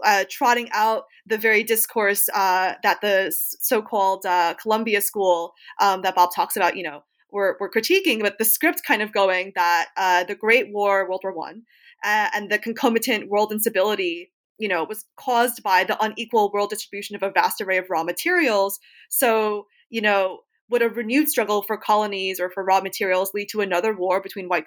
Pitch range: 195-235 Hz